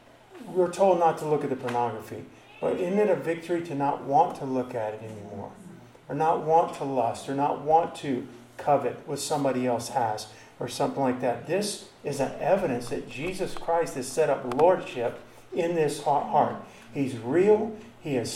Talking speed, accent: 185 wpm, American